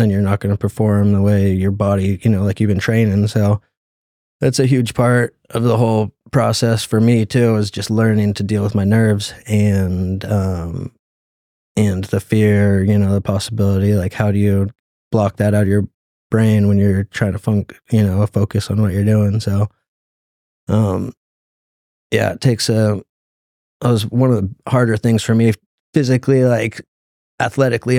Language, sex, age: English, male, 20-39